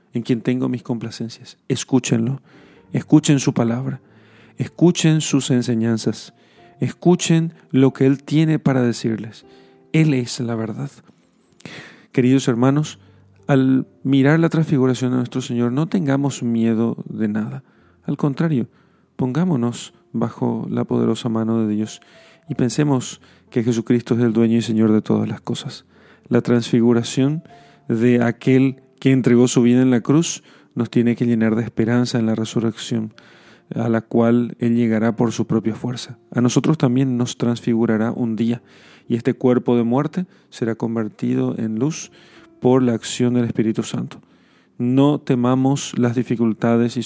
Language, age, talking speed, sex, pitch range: Spanish, 40-59, 150 wpm, male, 115-130 Hz